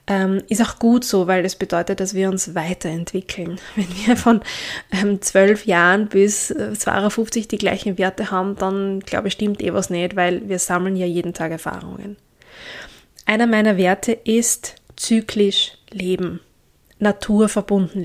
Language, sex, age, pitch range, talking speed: German, female, 20-39, 185-220 Hz, 150 wpm